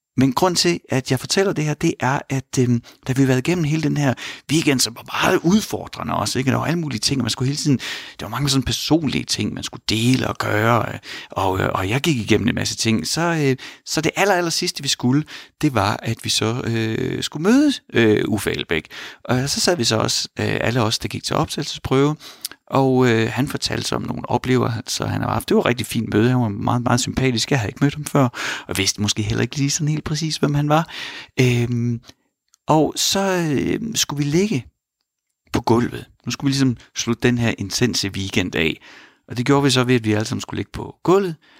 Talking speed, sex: 240 wpm, male